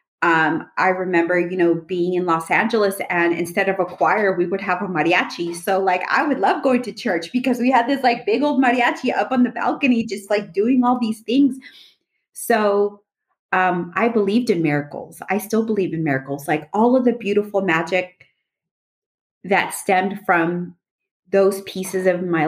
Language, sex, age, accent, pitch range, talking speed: English, female, 30-49, American, 165-205 Hz, 185 wpm